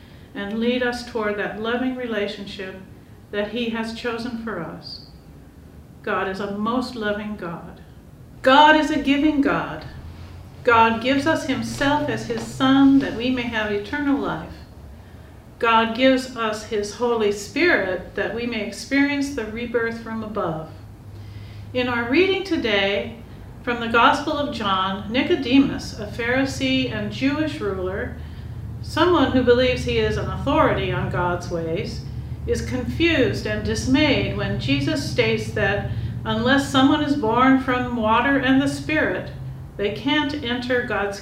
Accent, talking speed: American, 140 wpm